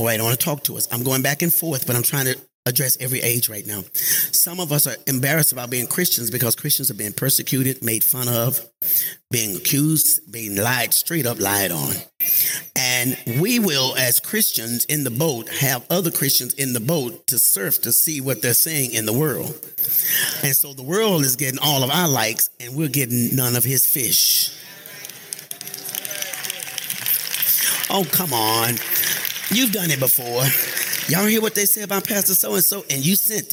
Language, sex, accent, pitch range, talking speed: English, male, American, 125-175 Hz, 190 wpm